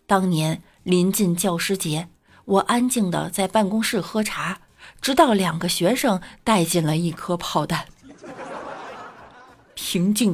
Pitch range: 185-275 Hz